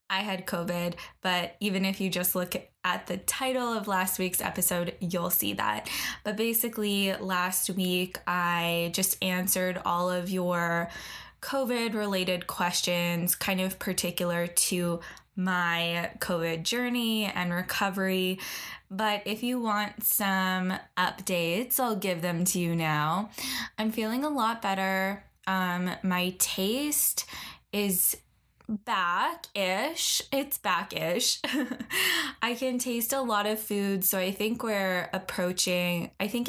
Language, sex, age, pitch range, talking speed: English, female, 10-29, 180-225 Hz, 130 wpm